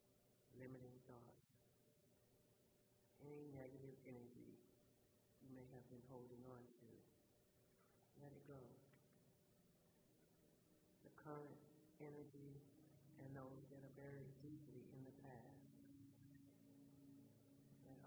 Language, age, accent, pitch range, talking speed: English, 50-69, American, 120-140 Hz, 95 wpm